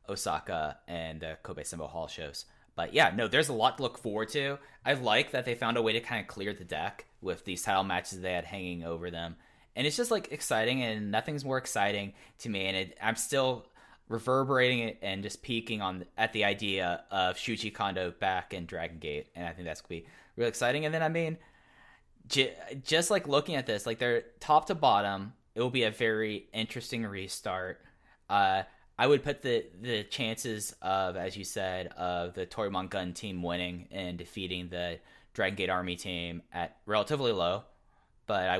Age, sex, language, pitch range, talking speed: 10-29, male, English, 90-125 Hz, 200 wpm